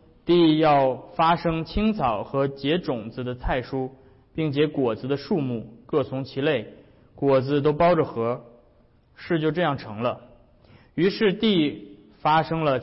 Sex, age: male, 20-39